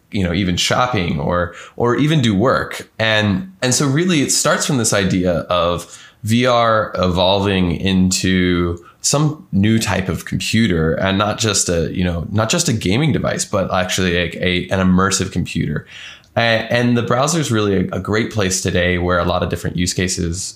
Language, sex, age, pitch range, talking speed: English, male, 20-39, 90-115 Hz, 180 wpm